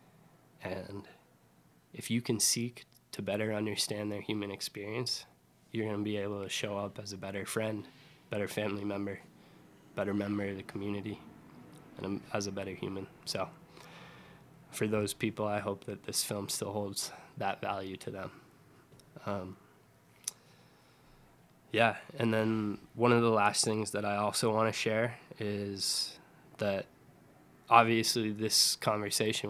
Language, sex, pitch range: English, male, 100-115 Hz